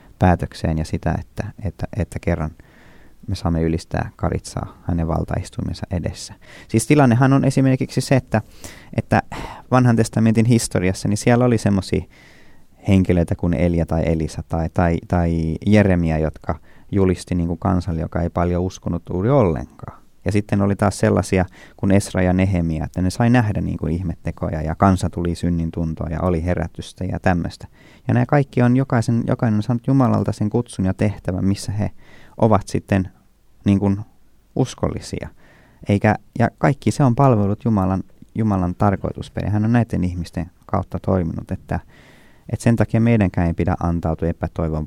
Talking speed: 155 wpm